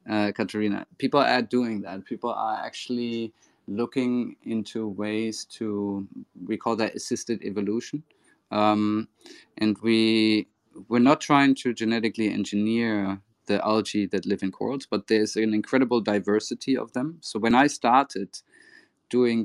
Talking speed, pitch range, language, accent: 140 wpm, 105-115 Hz, English, German